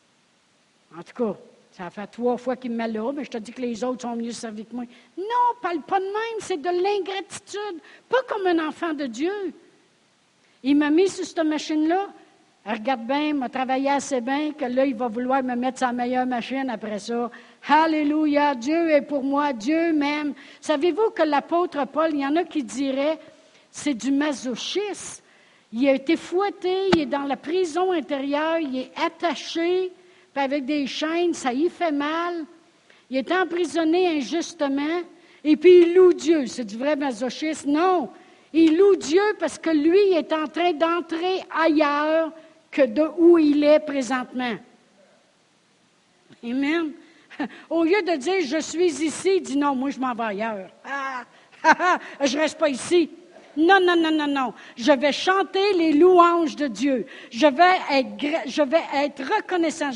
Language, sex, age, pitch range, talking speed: French, female, 60-79, 270-345 Hz, 180 wpm